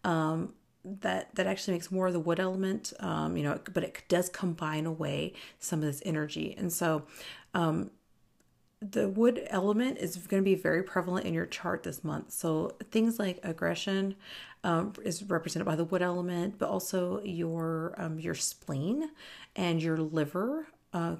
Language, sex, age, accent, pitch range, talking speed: English, female, 40-59, American, 165-195 Hz, 170 wpm